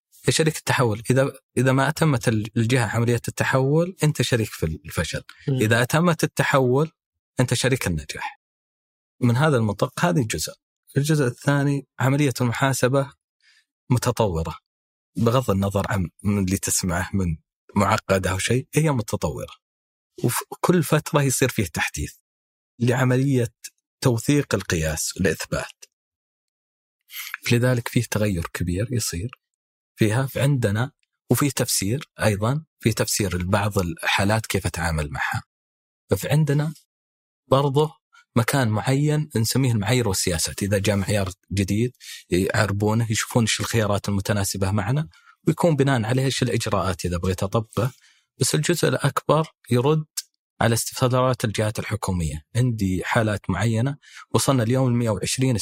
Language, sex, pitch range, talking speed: Arabic, male, 100-135 Hz, 115 wpm